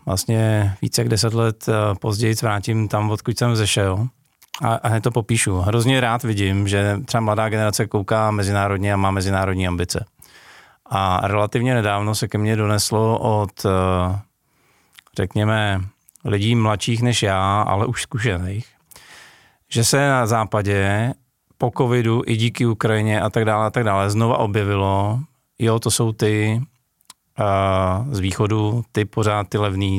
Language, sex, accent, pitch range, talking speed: Czech, male, native, 100-115 Hz, 145 wpm